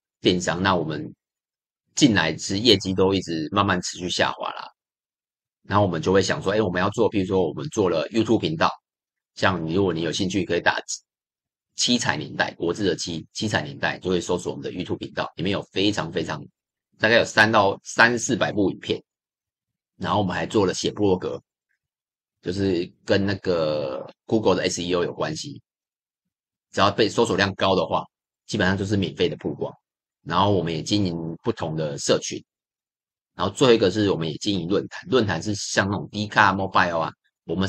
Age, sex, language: 30-49, male, Chinese